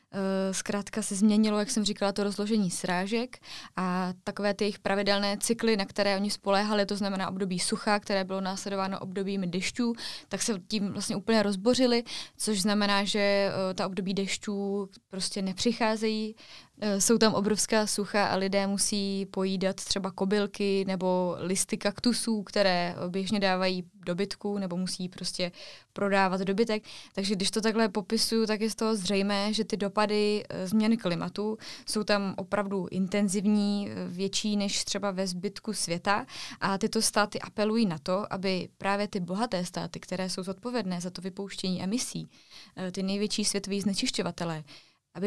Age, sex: 20-39, female